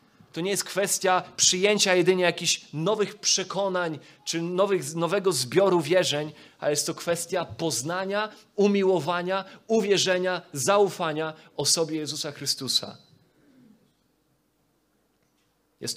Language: Polish